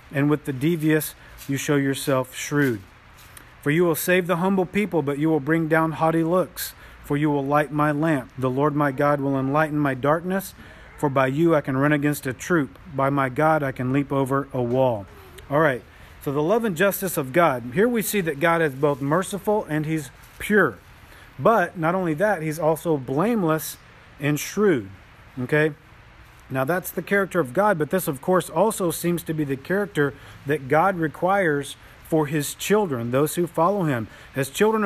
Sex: male